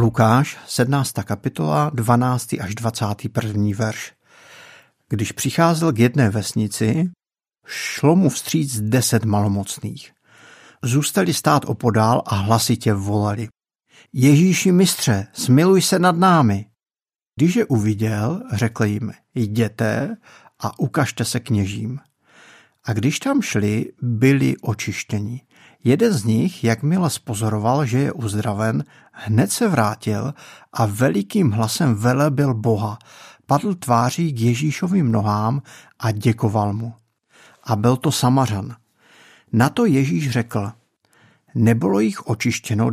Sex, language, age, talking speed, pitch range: male, Czech, 50-69, 115 wpm, 110-145 Hz